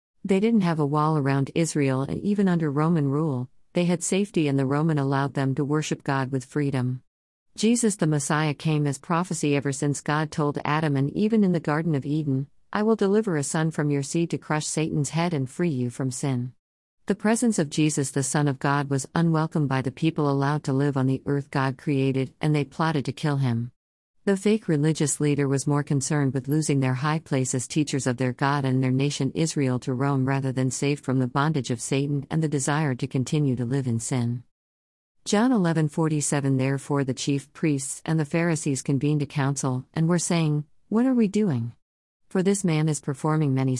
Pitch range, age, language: 130-160 Hz, 50-69, English